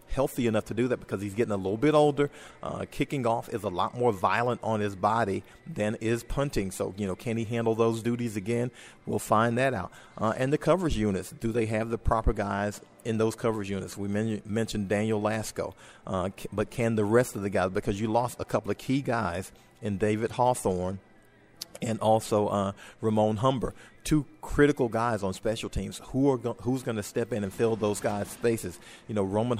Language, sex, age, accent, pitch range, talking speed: English, male, 40-59, American, 105-120 Hz, 210 wpm